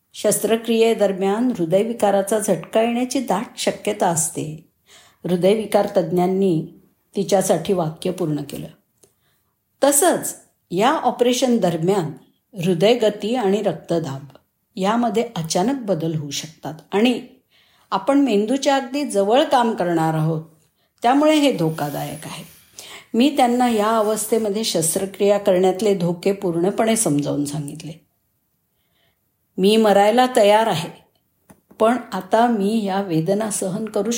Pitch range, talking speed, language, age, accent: 180-235 Hz, 105 wpm, Marathi, 50-69, native